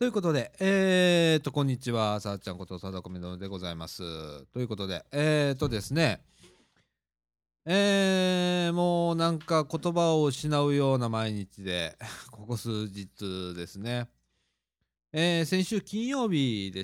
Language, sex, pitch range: Japanese, male, 95-140 Hz